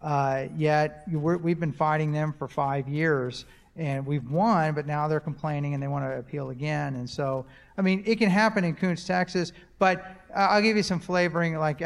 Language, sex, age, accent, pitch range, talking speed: English, male, 40-59, American, 145-180 Hz, 195 wpm